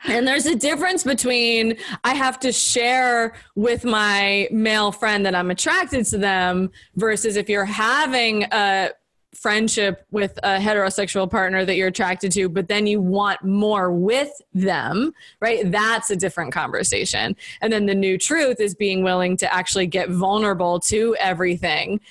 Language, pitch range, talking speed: English, 185-225 Hz, 155 wpm